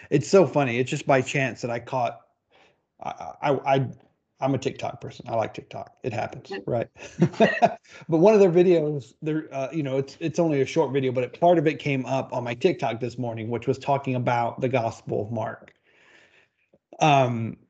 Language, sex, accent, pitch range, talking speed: English, male, American, 125-145 Hz, 200 wpm